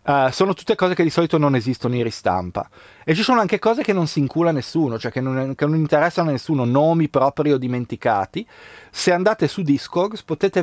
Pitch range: 110-155 Hz